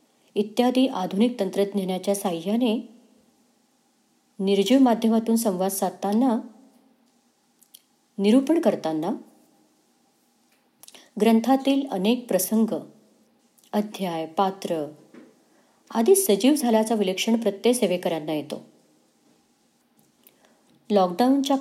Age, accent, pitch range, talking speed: 30-49, native, 200-255 Hz, 65 wpm